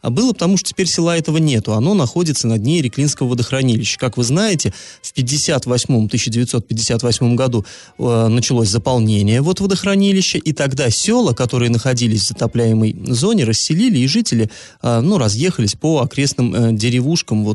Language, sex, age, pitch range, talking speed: Russian, male, 20-39, 115-145 Hz, 145 wpm